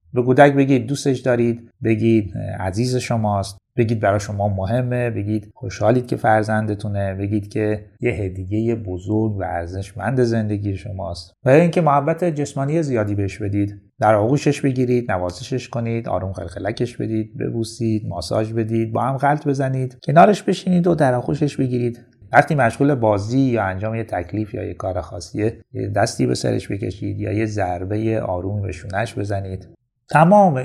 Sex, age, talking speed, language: male, 30-49, 145 wpm, Persian